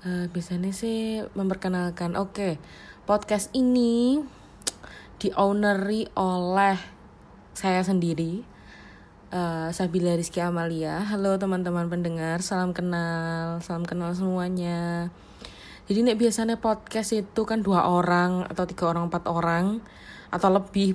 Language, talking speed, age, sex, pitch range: Indonesian, 110 wpm, 20-39, female, 170-195 Hz